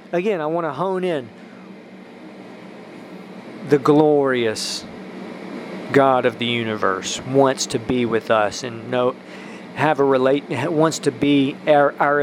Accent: American